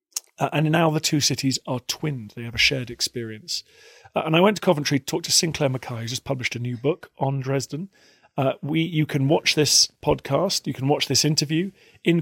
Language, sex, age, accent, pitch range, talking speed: English, male, 40-59, British, 115-145 Hz, 215 wpm